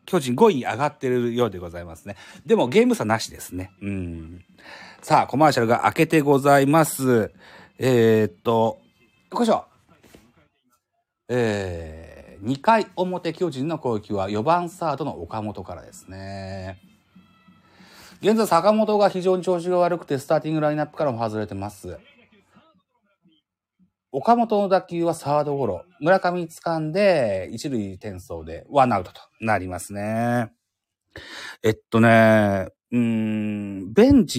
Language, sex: Japanese, male